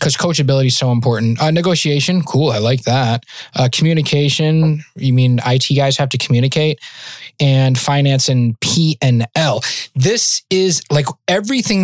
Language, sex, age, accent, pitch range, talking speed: English, male, 20-39, American, 130-155 Hz, 140 wpm